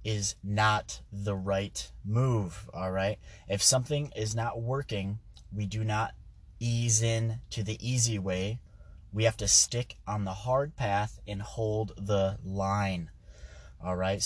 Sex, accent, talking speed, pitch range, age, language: male, American, 140 wpm, 95-115 Hz, 30-49, English